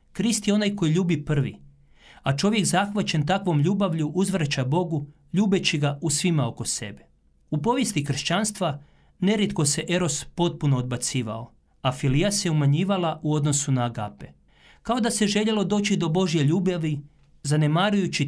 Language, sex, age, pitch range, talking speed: Croatian, male, 40-59, 140-185 Hz, 145 wpm